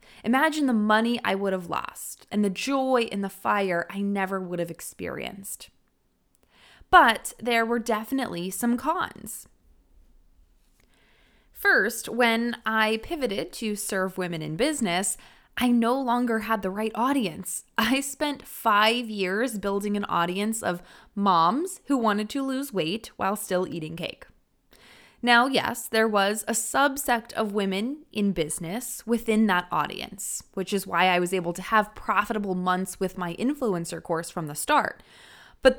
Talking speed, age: 150 wpm, 20-39